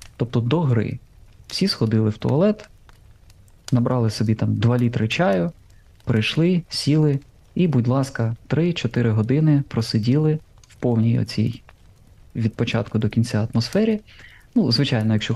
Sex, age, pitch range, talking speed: male, 20-39, 110-130 Hz, 125 wpm